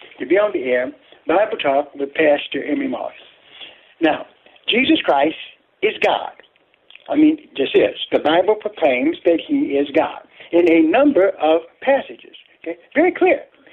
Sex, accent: male, American